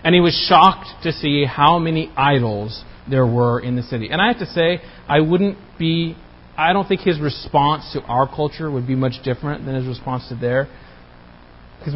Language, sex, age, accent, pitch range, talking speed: English, male, 40-59, American, 130-190 Hz, 200 wpm